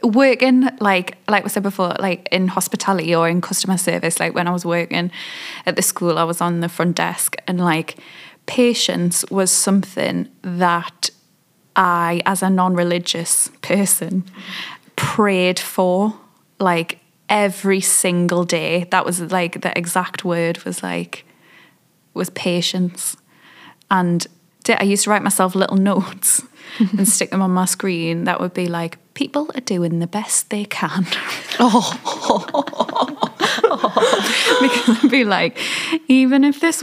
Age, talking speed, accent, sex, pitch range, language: 10-29, 140 wpm, British, female, 180-225 Hz, English